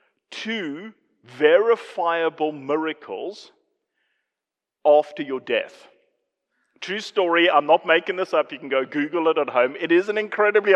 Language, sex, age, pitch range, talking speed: English, male, 40-59, 170-245 Hz, 135 wpm